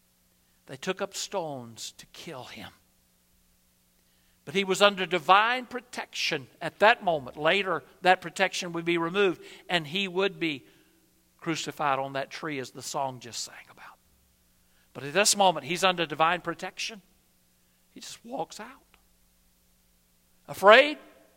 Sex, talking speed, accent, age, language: male, 140 wpm, American, 60-79, English